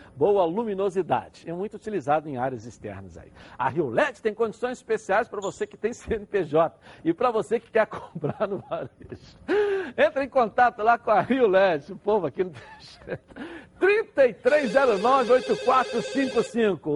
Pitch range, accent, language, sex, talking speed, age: 175-250 Hz, Brazilian, Portuguese, male, 150 wpm, 60-79